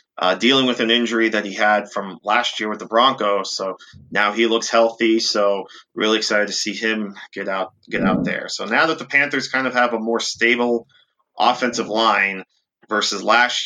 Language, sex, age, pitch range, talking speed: English, male, 30-49, 105-120 Hz, 200 wpm